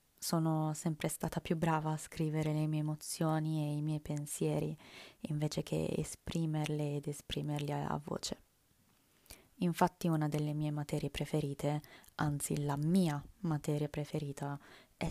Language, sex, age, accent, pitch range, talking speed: Italian, female, 20-39, native, 150-170 Hz, 130 wpm